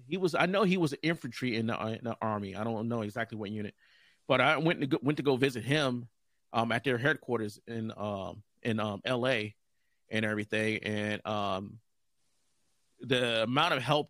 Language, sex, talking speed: English, male, 180 wpm